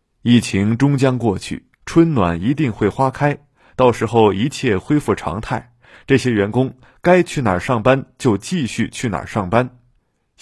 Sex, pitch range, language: male, 105-140 Hz, Chinese